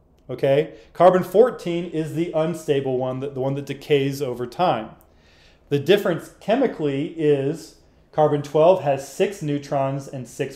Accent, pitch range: American, 130-160 Hz